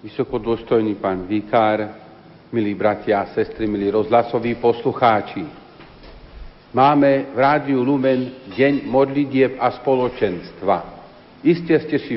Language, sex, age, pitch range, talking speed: Slovak, male, 50-69, 120-145 Hz, 105 wpm